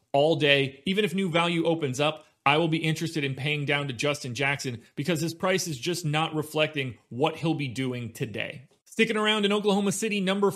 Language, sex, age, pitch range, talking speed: English, male, 30-49, 140-165 Hz, 205 wpm